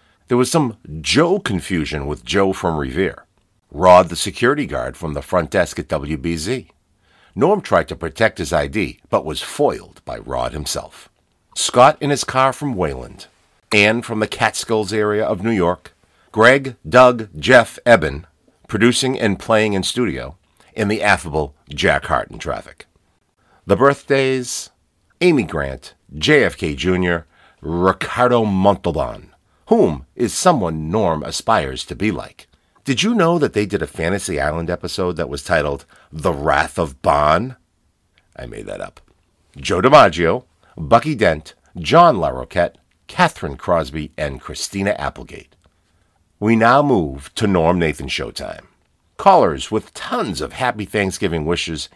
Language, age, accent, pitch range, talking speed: English, 50-69, American, 85-115 Hz, 140 wpm